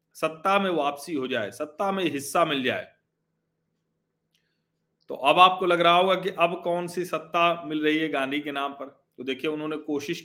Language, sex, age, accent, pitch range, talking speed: Hindi, male, 40-59, native, 155-200 Hz, 185 wpm